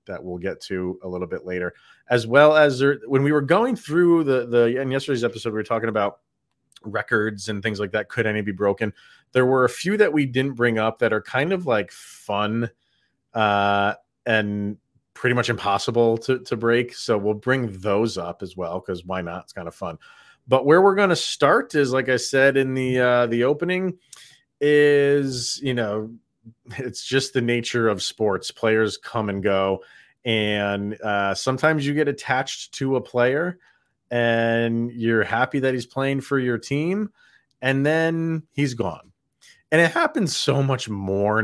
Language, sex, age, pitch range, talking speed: English, male, 30-49, 105-135 Hz, 185 wpm